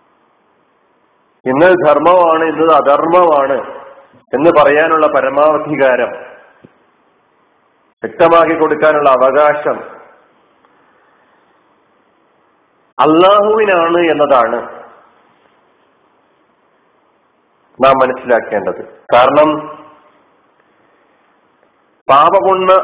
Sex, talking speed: male, 40 wpm